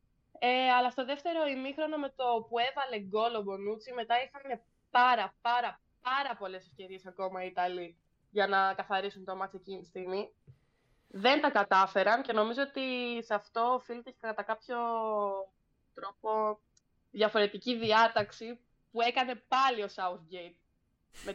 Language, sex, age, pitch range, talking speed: Greek, female, 20-39, 195-245 Hz, 135 wpm